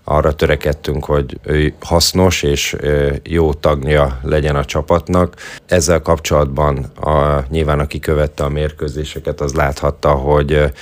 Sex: male